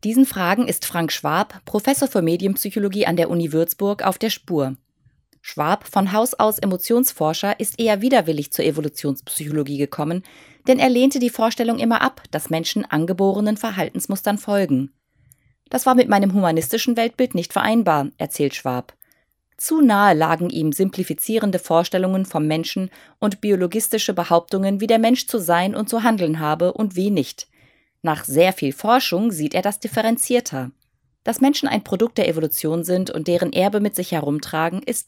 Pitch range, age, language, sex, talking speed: 155-220 Hz, 20-39, German, female, 160 wpm